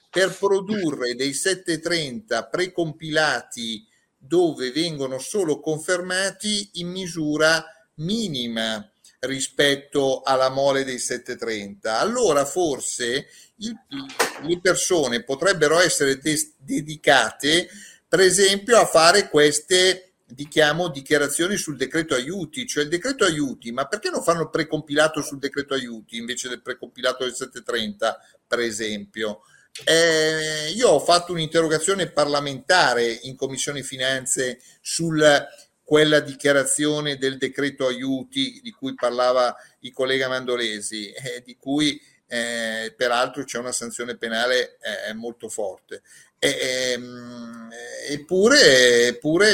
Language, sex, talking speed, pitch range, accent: Italian, male, 110 wpm, 125-170 Hz, native